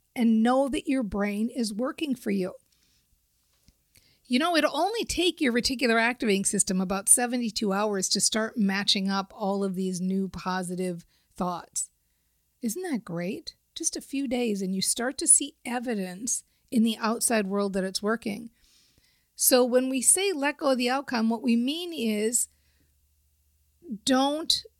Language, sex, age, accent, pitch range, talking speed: English, female, 50-69, American, 190-245 Hz, 155 wpm